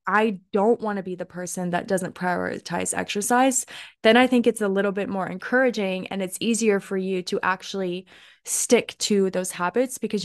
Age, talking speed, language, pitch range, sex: 20-39, 180 wpm, English, 185-230 Hz, female